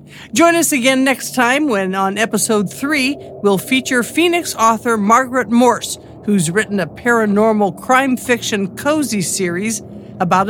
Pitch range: 195-250 Hz